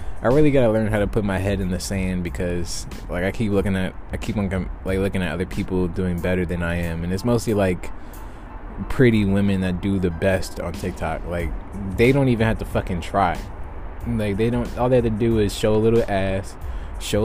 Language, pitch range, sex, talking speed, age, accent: English, 90-105 Hz, male, 225 wpm, 20-39, American